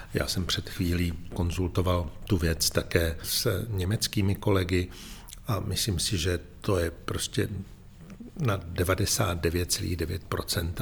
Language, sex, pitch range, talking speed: Czech, male, 90-105 Hz, 110 wpm